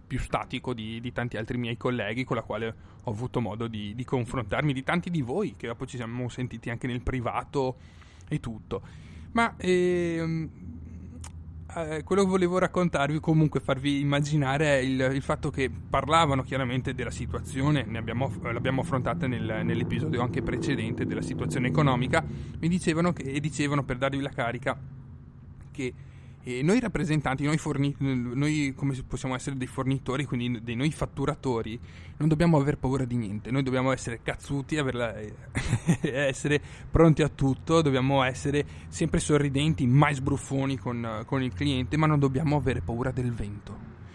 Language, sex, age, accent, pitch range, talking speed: Italian, male, 30-49, native, 120-150 Hz, 160 wpm